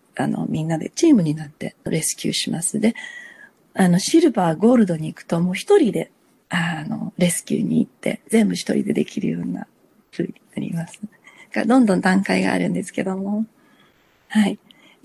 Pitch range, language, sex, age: 185-250 Hz, Japanese, female, 40-59